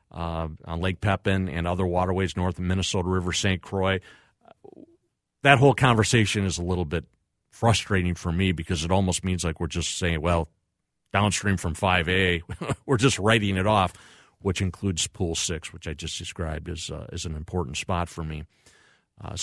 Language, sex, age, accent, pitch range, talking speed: English, male, 40-59, American, 90-110 Hz, 180 wpm